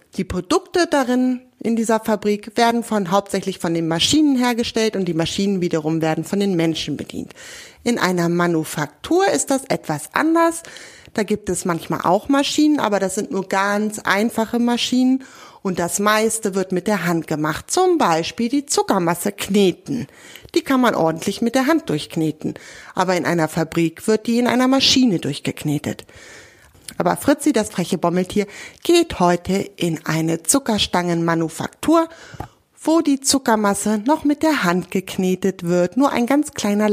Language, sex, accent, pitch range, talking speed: German, female, German, 175-255 Hz, 155 wpm